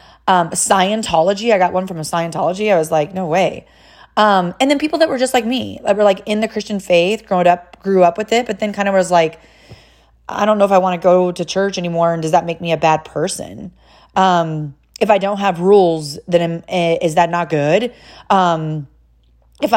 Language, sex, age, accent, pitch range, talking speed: English, female, 30-49, American, 155-195 Hz, 225 wpm